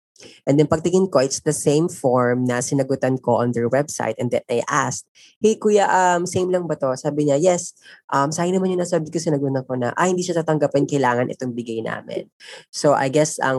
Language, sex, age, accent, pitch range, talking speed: Filipino, female, 20-39, native, 125-155 Hz, 225 wpm